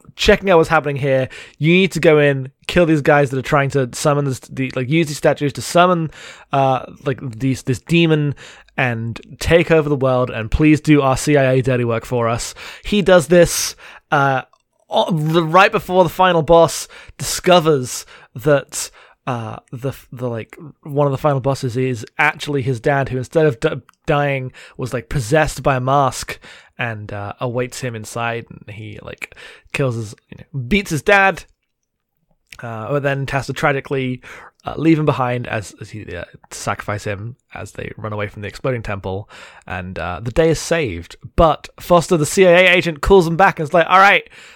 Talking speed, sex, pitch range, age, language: 180 wpm, male, 120-155 Hz, 20-39, English